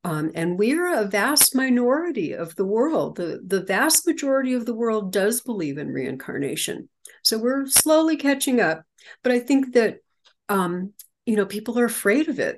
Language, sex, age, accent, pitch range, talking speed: English, female, 60-79, American, 180-255 Hz, 180 wpm